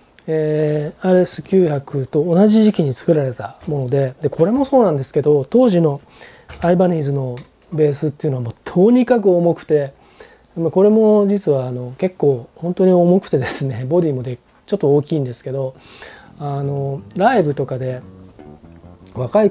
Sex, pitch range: male, 130-180 Hz